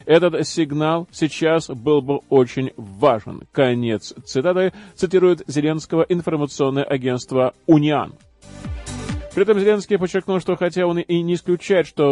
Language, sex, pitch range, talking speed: Russian, male, 145-175 Hz, 125 wpm